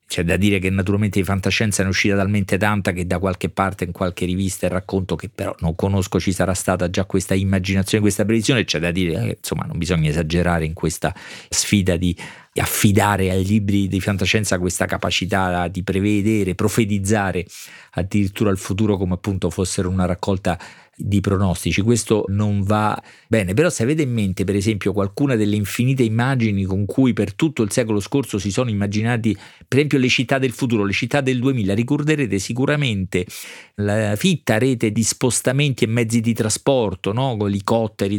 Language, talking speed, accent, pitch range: Italian, 175 wpm, native, 95-115 Hz